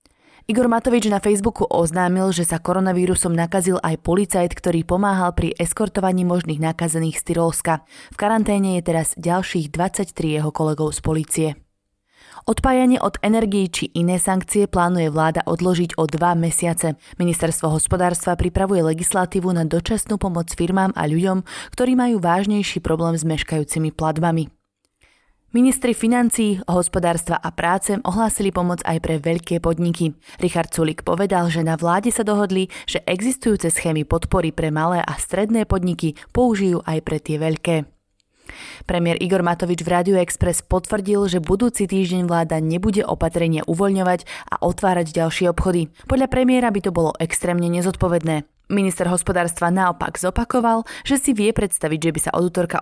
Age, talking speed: 20-39, 145 wpm